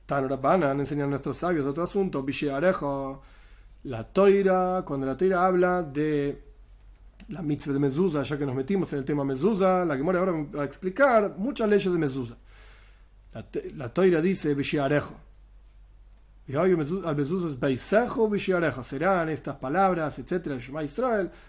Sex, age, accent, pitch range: male, 40-59, Argentinian, 140-190 Hz